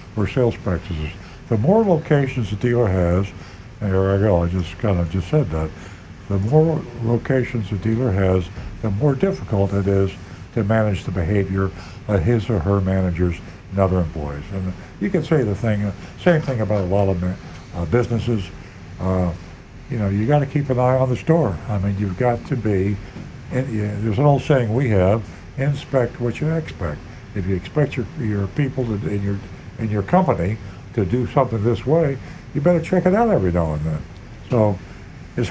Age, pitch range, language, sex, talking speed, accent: 60-79, 95-125 Hz, English, male, 200 wpm, American